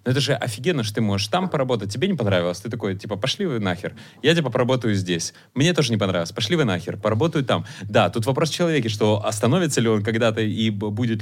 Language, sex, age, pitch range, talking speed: Ukrainian, male, 30-49, 100-120 Hz, 230 wpm